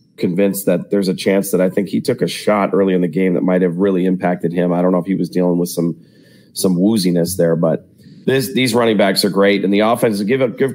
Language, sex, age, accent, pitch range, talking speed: English, male, 30-49, American, 95-115 Hz, 260 wpm